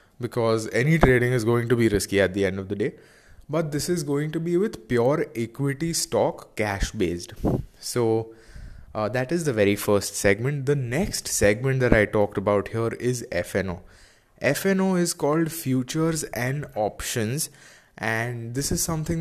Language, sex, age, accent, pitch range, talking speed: English, male, 20-39, Indian, 105-145 Hz, 170 wpm